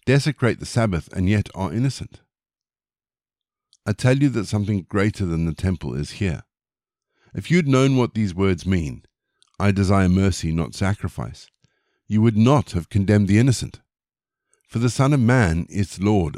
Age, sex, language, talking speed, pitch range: 50-69, male, English, 165 wpm, 90-115 Hz